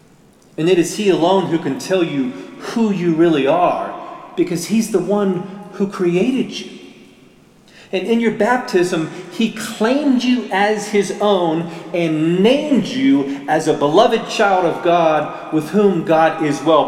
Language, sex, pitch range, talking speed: English, male, 170-220 Hz, 155 wpm